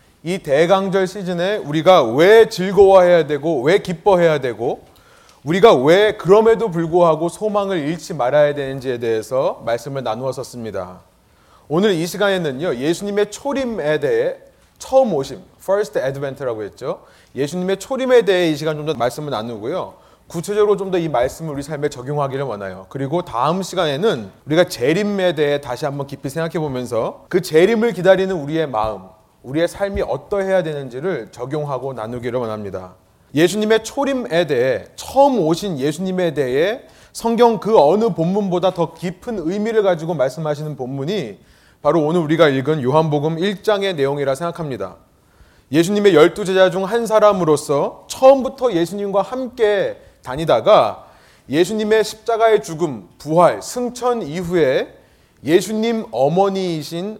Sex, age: male, 30-49